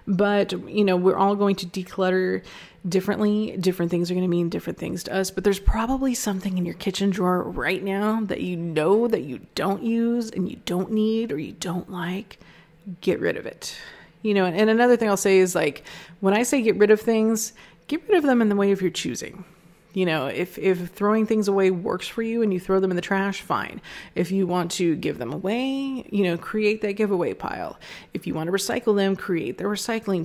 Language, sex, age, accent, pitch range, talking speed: English, female, 30-49, American, 180-210 Hz, 225 wpm